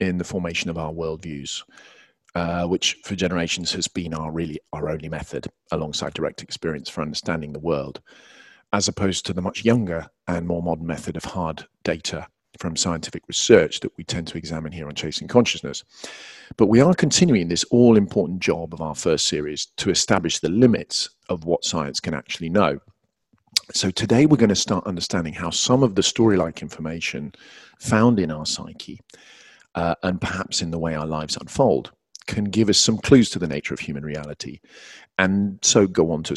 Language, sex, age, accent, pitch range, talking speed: English, male, 40-59, British, 80-105 Hz, 185 wpm